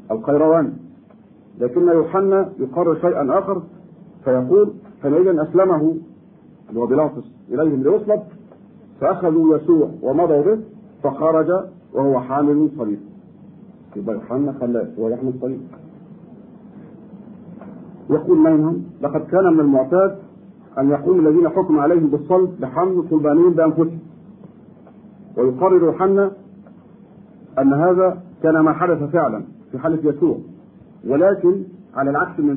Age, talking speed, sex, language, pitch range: 50-69, 100 wpm, male, Arabic, 150-200 Hz